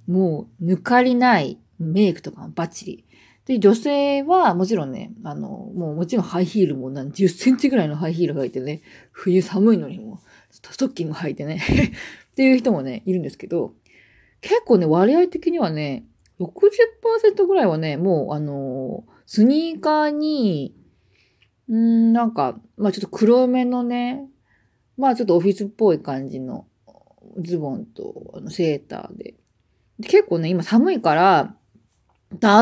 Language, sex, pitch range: Japanese, female, 165-250 Hz